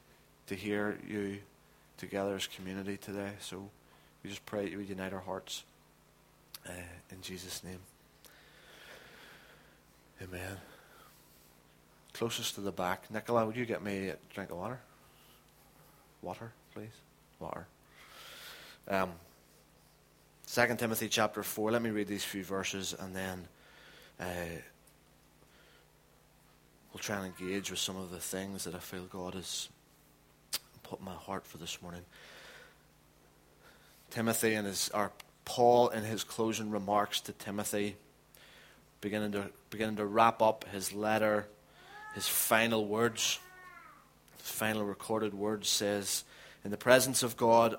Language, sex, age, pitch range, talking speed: English, male, 20-39, 95-115 Hz, 130 wpm